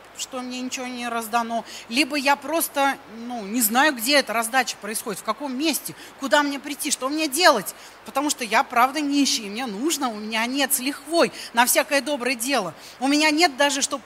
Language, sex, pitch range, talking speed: Russian, female, 245-315 Hz, 190 wpm